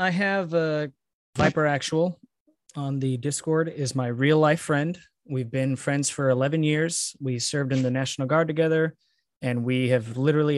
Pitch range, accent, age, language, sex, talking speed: 130-170 Hz, American, 20-39, English, male, 170 wpm